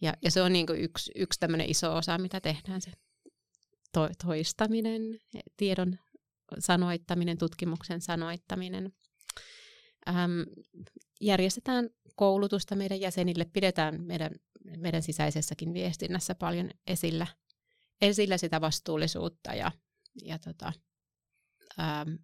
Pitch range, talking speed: 170-200 Hz, 100 wpm